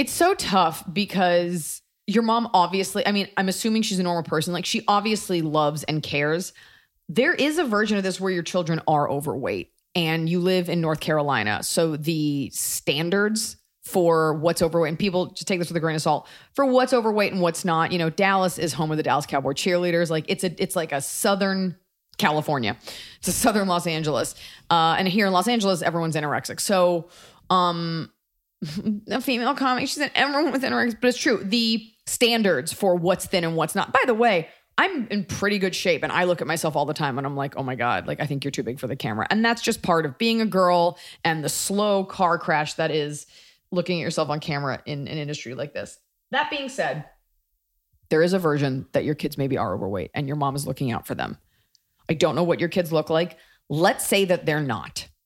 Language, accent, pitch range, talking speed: English, American, 155-200 Hz, 220 wpm